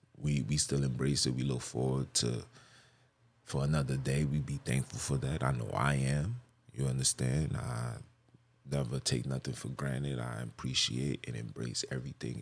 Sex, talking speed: male, 165 wpm